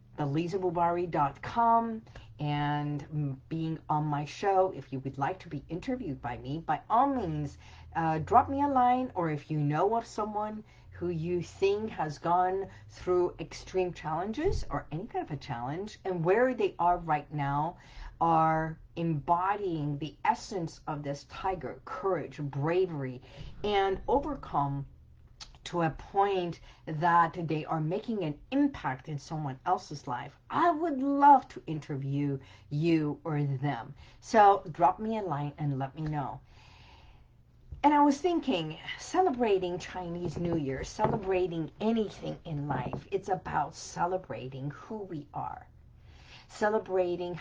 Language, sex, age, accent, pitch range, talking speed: English, female, 50-69, American, 145-195 Hz, 140 wpm